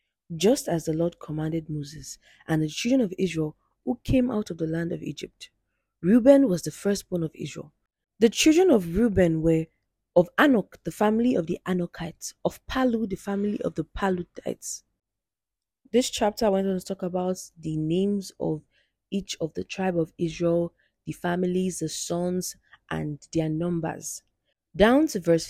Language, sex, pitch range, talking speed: English, female, 155-195 Hz, 165 wpm